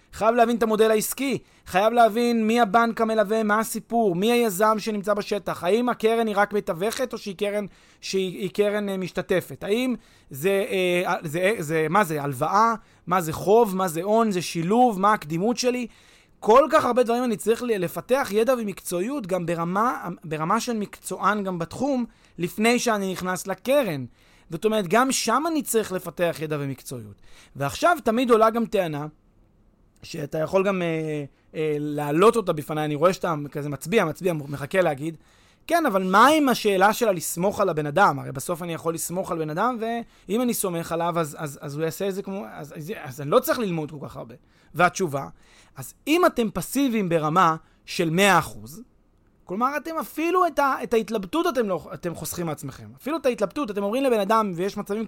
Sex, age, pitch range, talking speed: male, 30-49, 165-230 Hz, 180 wpm